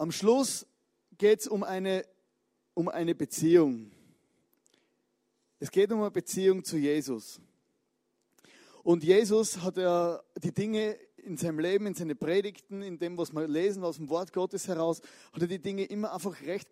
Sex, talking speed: male, 160 wpm